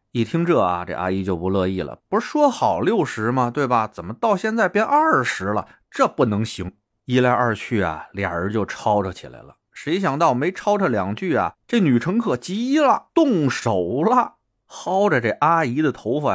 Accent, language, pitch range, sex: native, Chinese, 95-125 Hz, male